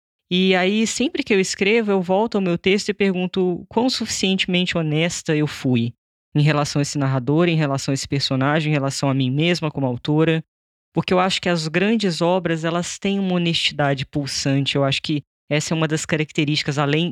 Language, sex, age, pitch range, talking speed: Portuguese, female, 20-39, 145-185 Hz, 195 wpm